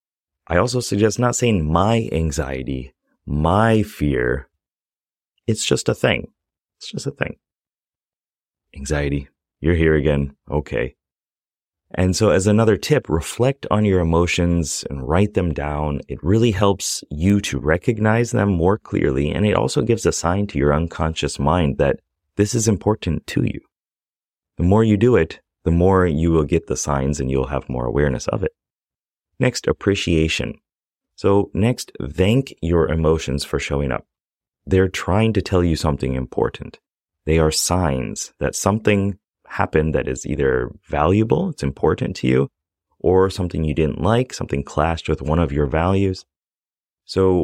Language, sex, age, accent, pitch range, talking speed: English, male, 30-49, American, 75-100 Hz, 155 wpm